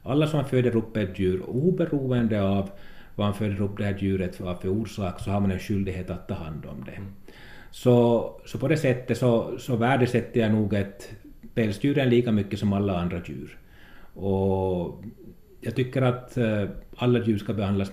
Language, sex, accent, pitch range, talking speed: Finnish, male, native, 100-115 Hz, 185 wpm